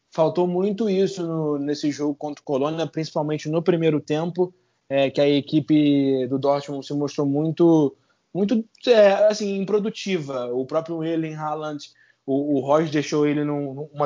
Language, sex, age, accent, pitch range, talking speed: Portuguese, male, 20-39, Brazilian, 135-160 Hz, 160 wpm